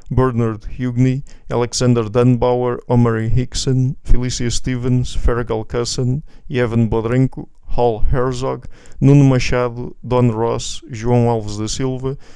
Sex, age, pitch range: male, 50-69, 120-130 Hz